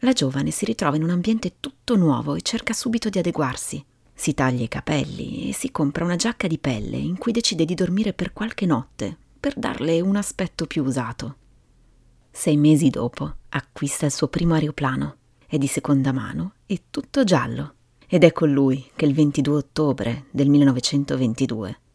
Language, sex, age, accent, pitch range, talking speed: Italian, female, 30-49, native, 130-165 Hz, 175 wpm